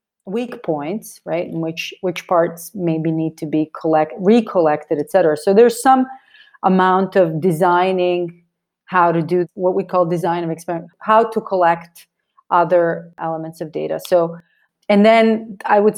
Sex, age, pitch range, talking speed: female, 30-49, 165-195 Hz, 155 wpm